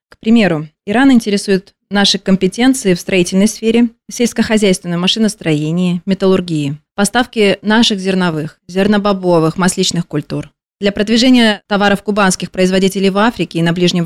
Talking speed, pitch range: 120 wpm, 170-205 Hz